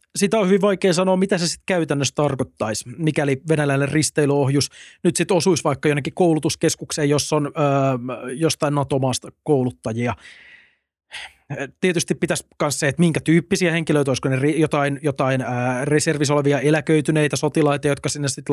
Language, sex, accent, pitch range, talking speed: Finnish, male, native, 135-165 Hz, 145 wpm